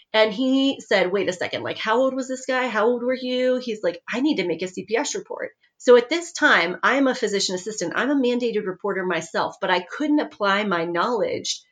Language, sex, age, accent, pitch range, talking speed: English, female, 30-49, American, 175-245 Hz, 225 wpm